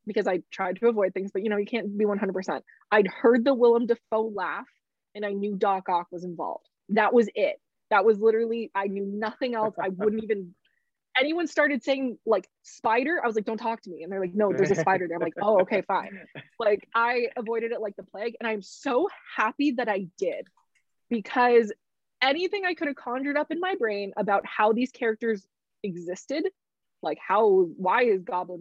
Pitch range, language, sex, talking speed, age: 195-255 Hz, English, female, 205 wpm, 20-39